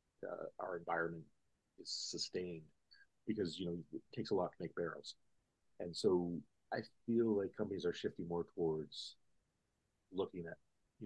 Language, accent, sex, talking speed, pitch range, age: English, American, male, 150 wpm, 85-105 Hz, 40-59